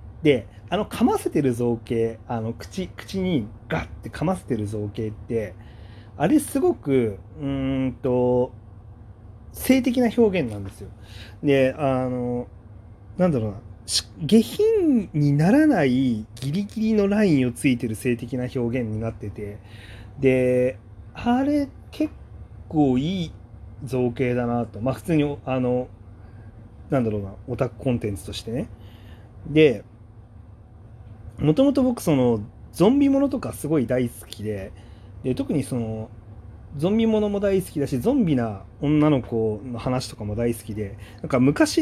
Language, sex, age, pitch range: Japanese, male, 30-49, 105-155 Hz